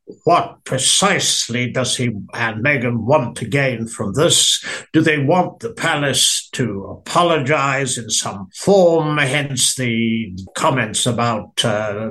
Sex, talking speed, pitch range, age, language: male, 130 wpm, 115-145 Hz, 60-79, English